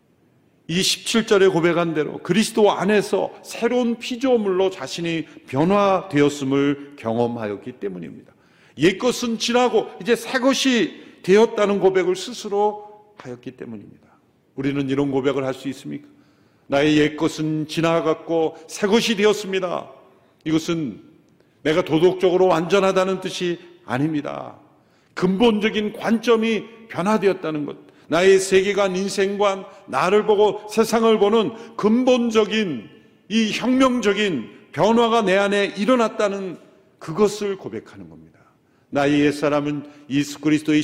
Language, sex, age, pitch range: Korean, male, 50-69, 150-210 Hz